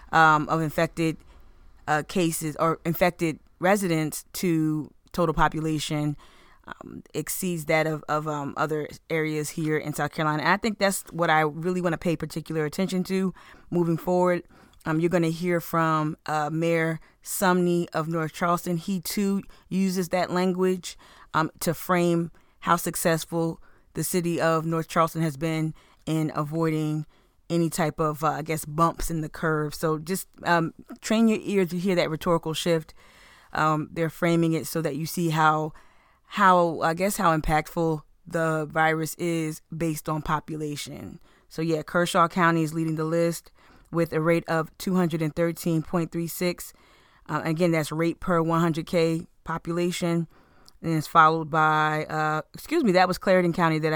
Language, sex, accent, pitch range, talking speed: English, female, American, 155-175 Hz, 155 wpm